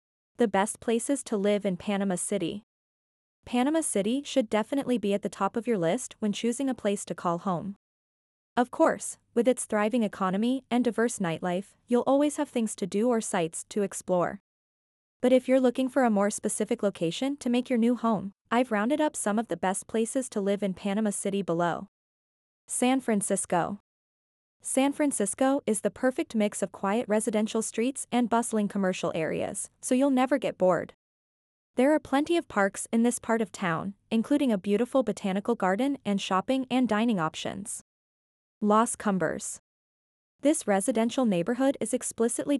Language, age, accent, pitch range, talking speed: English, 20-39, American, 200-255 Hz, 170 wpm